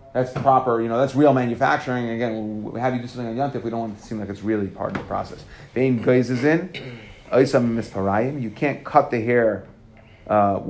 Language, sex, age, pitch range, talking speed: English, male, 30-49, 110-125 Hz, 195 wpm